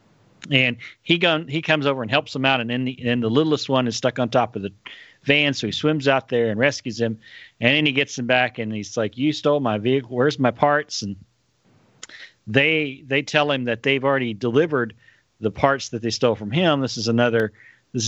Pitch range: 110-135 Hz